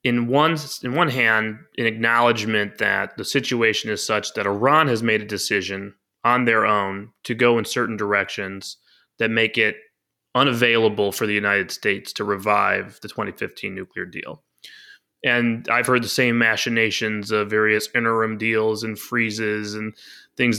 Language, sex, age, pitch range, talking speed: English, male, 20-39, 105-125 Hz, 155 wpm